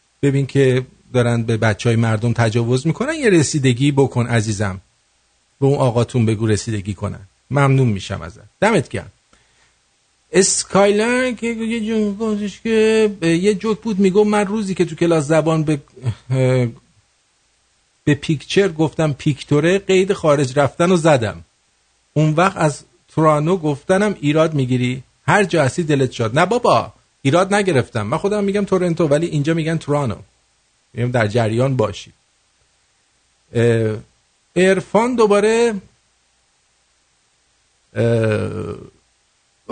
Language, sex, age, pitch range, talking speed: English, male, 50-69, 120-195 Hz, 120 wpm